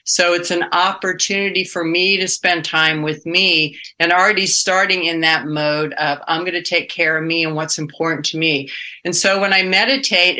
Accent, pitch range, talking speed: American, 155-180 Hz, 200 wpm